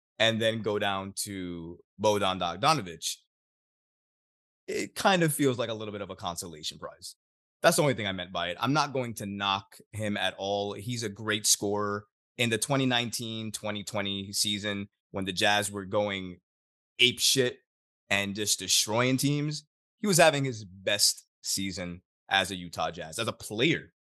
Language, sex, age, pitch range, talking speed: English, male, 20-39, 95-125 Hz, 170 wpm